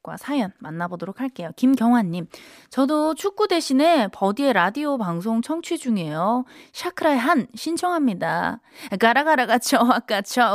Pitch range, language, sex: 200-290 Hz, Korean, female